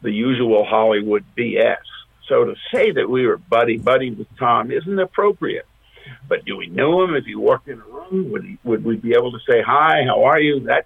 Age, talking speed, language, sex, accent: 50-69, 220 wpm, English, male, American